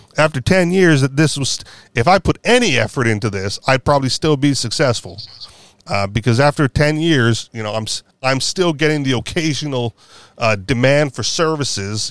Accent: American